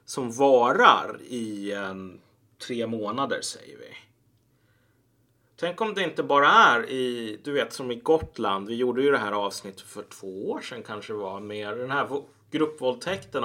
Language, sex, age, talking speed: Swedish, male, 30-49, 155 wpm